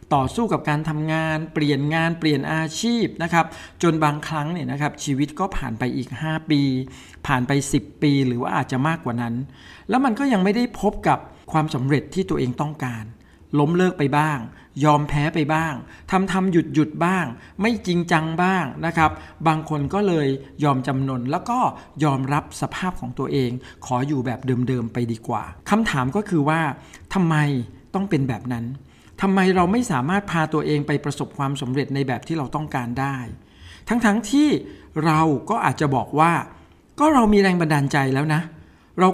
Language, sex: Thai, male